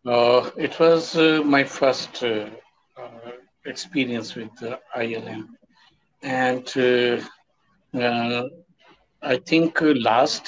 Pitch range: 120-145 Hz